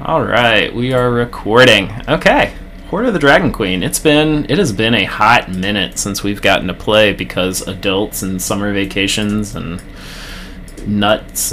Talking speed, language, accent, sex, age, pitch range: 160 wpm, English, American, male, 20-39, 95-115 Hz